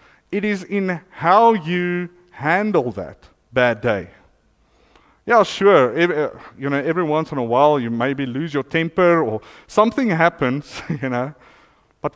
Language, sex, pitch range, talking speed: English, male, 125-185 Hz, 150 wpm